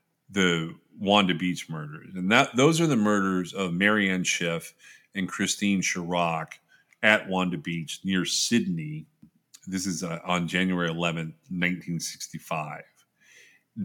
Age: 30-49